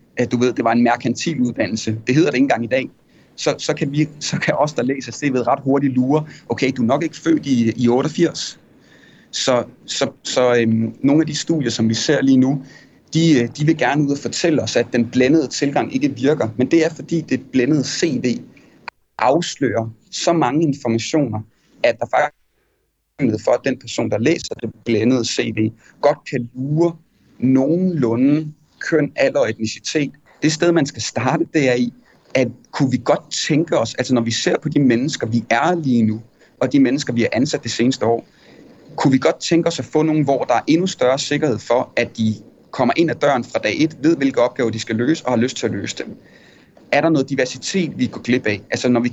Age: 30-49